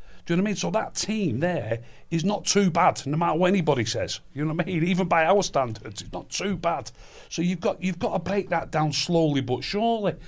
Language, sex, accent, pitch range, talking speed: English, male, British, 115-165 Hz, 255 wpm